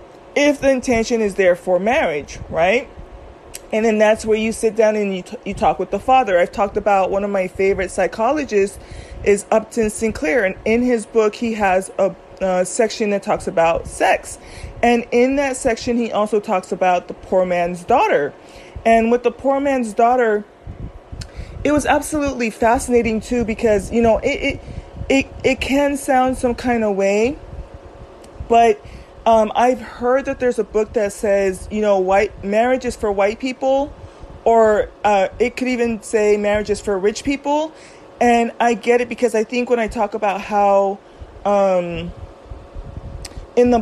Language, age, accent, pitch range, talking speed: English, 30-49, American, 200-245 Hz, 175 wpm